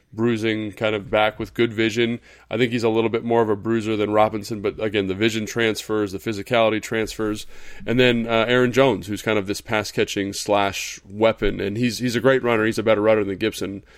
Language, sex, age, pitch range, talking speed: English, male, 20-39, 110-130 Hz, 225 wpm